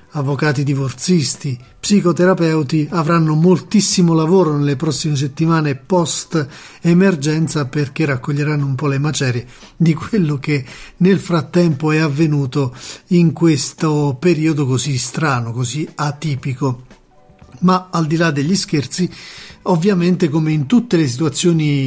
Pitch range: 140-170 Hz